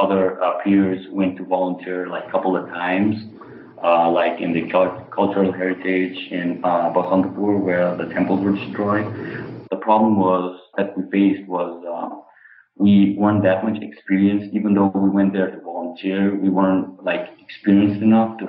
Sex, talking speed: male, 170 wpm